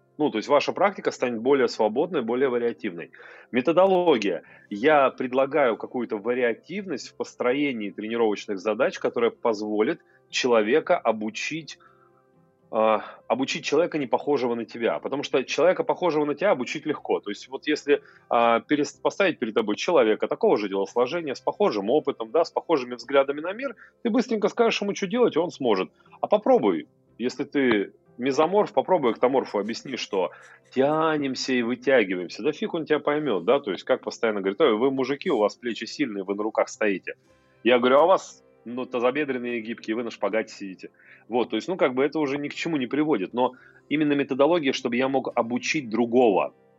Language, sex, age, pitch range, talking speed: Russian, male, 30-49, 115-155 Hz, 170 wpm